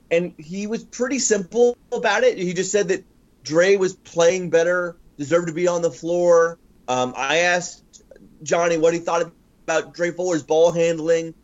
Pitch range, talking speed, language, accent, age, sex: 170-230 Hz, 180 wpm, English, American, 30-49, male